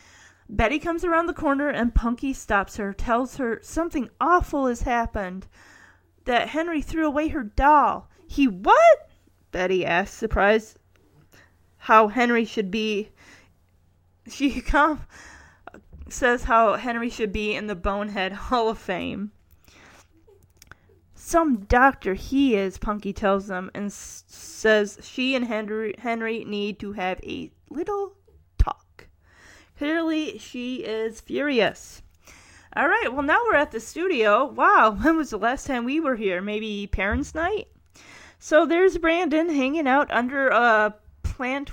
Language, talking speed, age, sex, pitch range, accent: English, 135 wpm, 20-39, female, 200-280 Hz, American